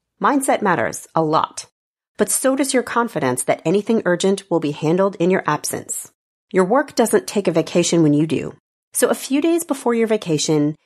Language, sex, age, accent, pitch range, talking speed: English, female, 40-59, American, 165-225 Hz, 190 wpm